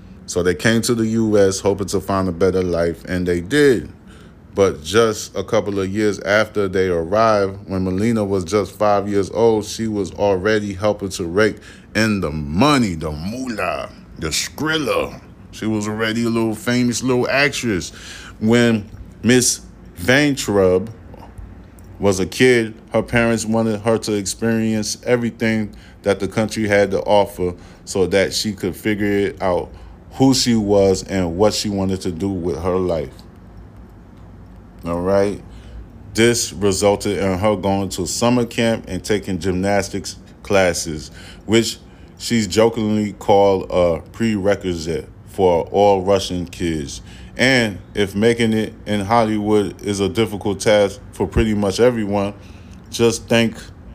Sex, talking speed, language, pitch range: male, 145 wpm, English, 95-110 Hz